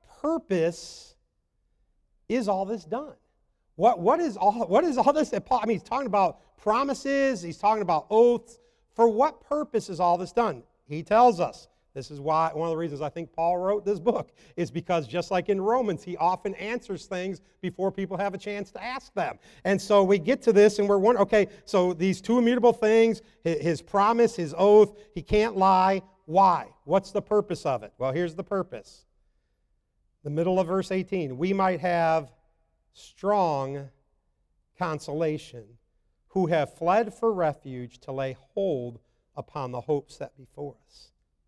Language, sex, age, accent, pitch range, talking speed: English, male, 50-69, American, 150-210 Hz, 175 wpm